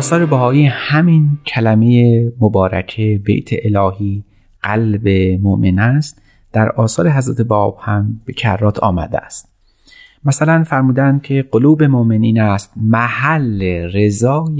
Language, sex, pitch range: Persian, male, 105-145 Hz